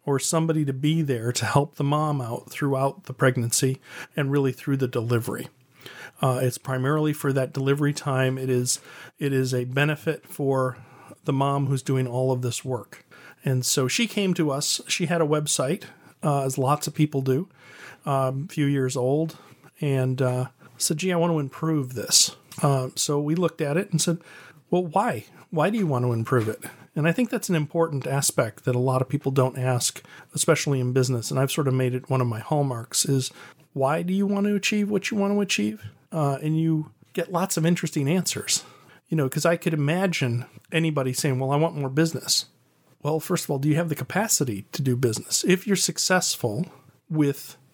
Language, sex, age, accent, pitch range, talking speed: English, male, 40-59, American, 130-160 Hz, 205 wpm